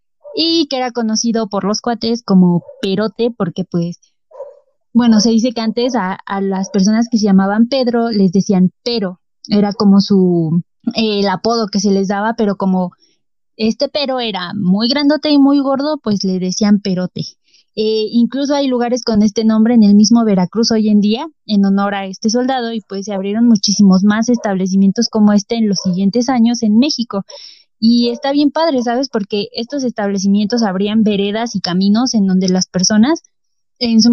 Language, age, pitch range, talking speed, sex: Spanish, 20-39, 195-240 Hz, 180 wpm, female